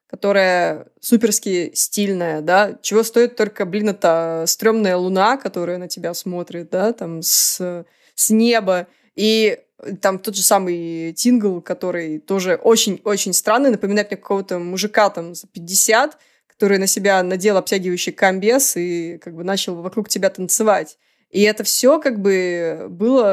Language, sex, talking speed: Russian, female, 145 wpm